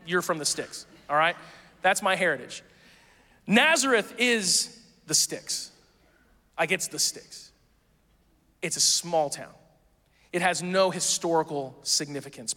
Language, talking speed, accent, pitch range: English, 125 wpm, American, 160-200 Hz